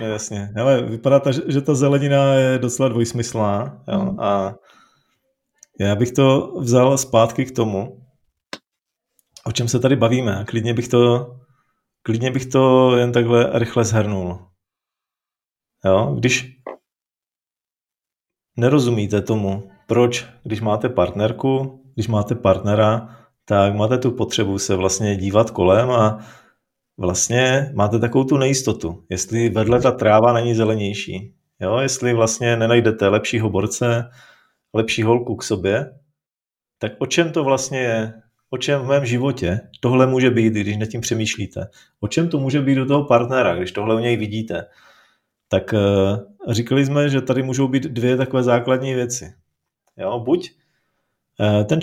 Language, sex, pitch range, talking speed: Czech, male, 105-130 Hz, 135 wpm